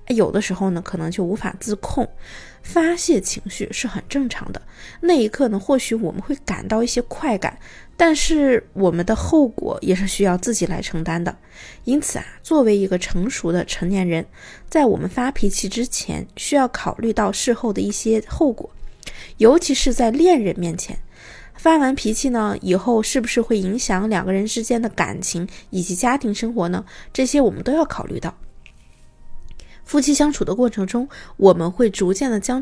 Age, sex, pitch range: 20-39, female, 195-265 Hz